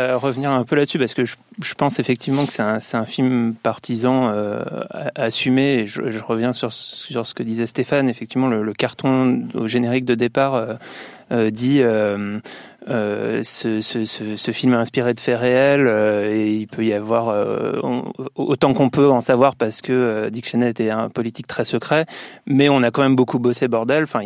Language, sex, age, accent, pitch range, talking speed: French, male, 30-49, French, 115-130 Hz, 200 wpm